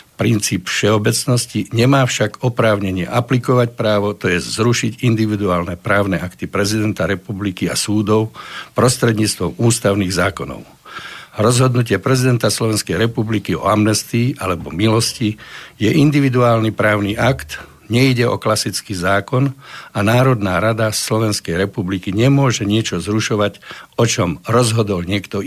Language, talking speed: Slovak, 115 wpm